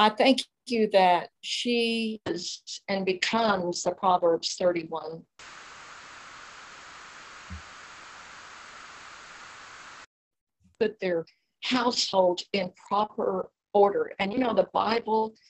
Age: 50-69